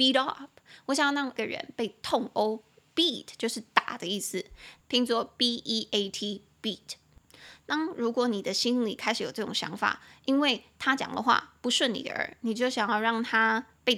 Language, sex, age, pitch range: Chinese, female, 20-39, 220-260 Hz